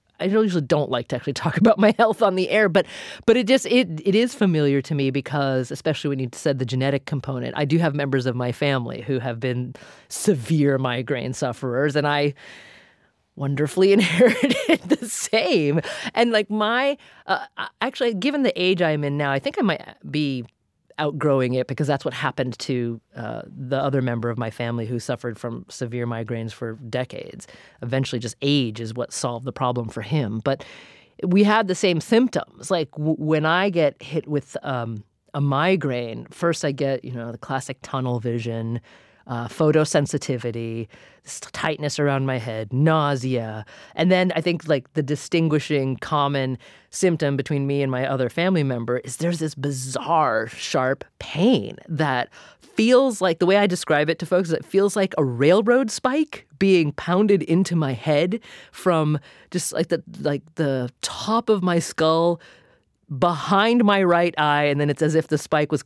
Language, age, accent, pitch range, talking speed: English, 30-49, American, 130-180 Hz, 175 wpm